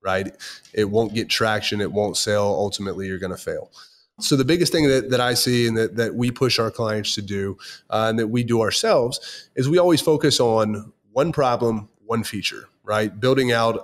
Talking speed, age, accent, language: 210 wpm, 30-49, American, English